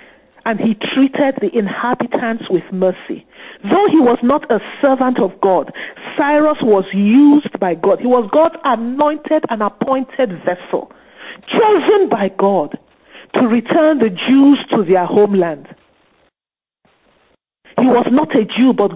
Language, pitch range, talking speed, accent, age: English, 205-280 Hz, 135 wpm, Nigerian, 50-69